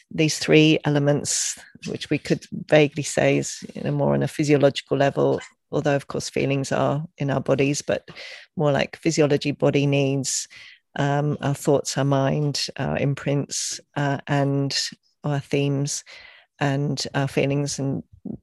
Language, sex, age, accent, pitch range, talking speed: English, female, 40-59, British, 140-165 Hz, 145 wpm